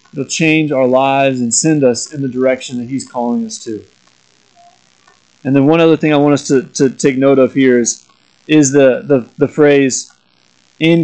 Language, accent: English, American